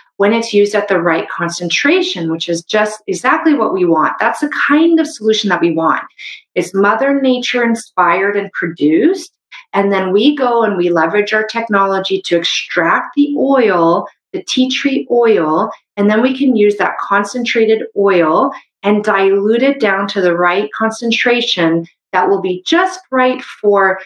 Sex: female